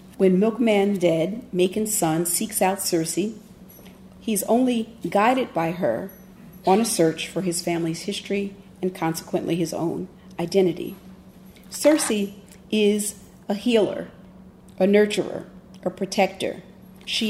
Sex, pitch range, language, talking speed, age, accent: female, 175-205 Hz, English, 120 wpm, 40-59, American